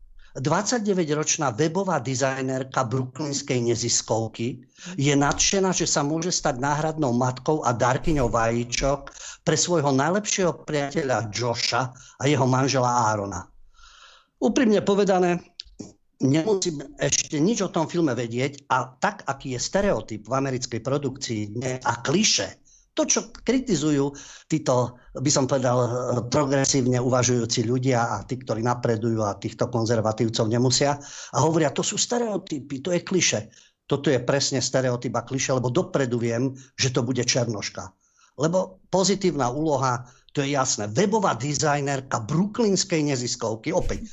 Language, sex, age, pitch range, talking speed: Slovak, male, 50-69, 120-160 Hz, 125 wpm